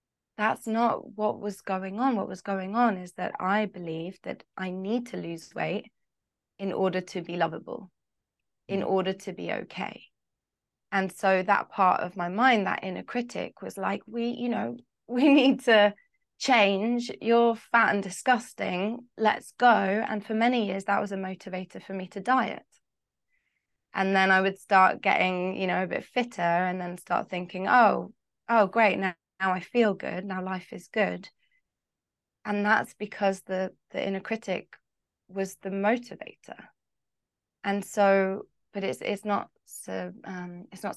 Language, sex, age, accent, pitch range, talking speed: English, female, 20-39, British, 175-215 Hz, 165 wpm